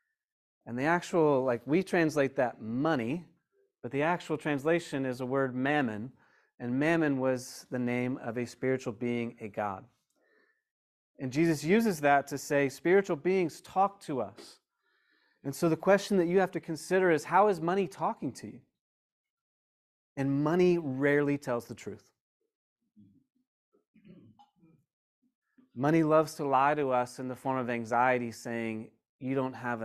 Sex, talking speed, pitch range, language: male, 150 wpm, 130-170 Hz, English